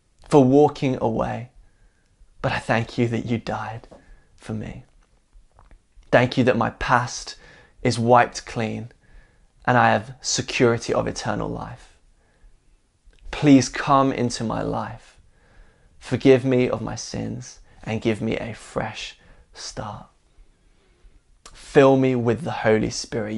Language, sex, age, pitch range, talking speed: English, male, 20-39, 110-130 Hz, 125 wpm